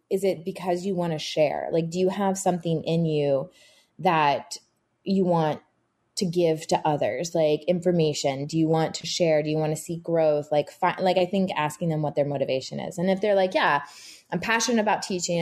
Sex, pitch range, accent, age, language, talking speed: female, 155-190 Hz, American, 20-39, English, 210 wpm